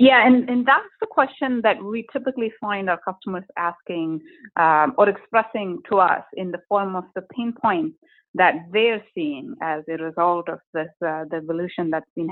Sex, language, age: female, English, 30-49